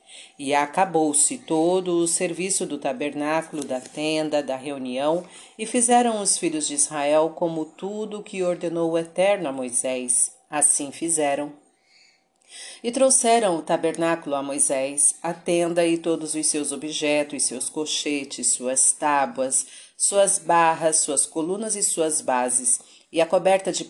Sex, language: female, Portuguese